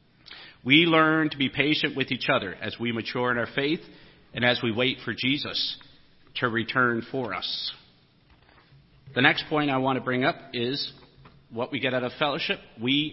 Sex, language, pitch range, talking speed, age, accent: male, English, 115-140 Hz, 185 wpm, 50-69, American